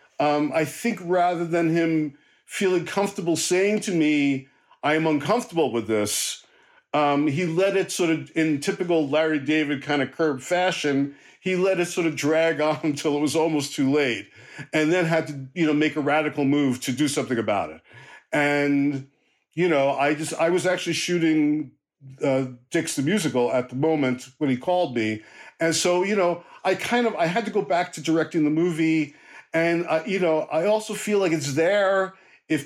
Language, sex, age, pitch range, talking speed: English, male, 50-69, 145-180 Hz, 195 wpm